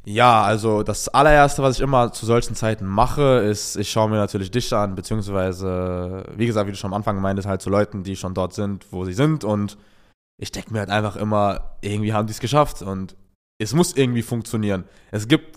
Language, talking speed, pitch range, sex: German, 215 wpm, 100-130 Hz, male